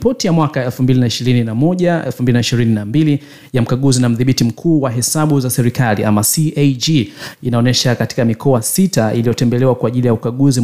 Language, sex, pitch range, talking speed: Swahili, male, 115-140 Hz, 135 wpm